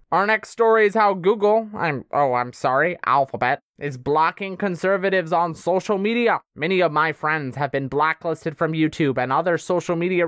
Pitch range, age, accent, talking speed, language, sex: 165-220 Hz, 20-39, American, 175 wpm, English, male